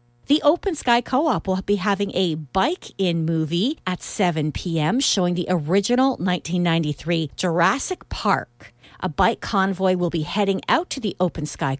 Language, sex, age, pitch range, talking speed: English, female, 50-69, 155-210 Hz, 160 wpm